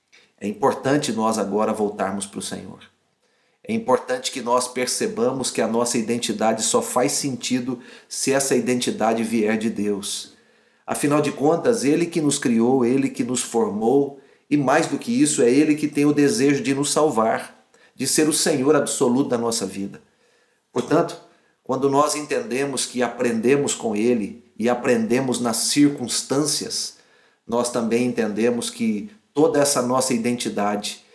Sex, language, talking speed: male, Portuguese, 150 wpm